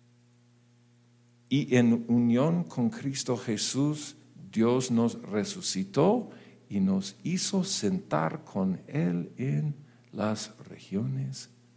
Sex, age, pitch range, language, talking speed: male, 50-69, 115-130 Hz, Spanish, 90 wpm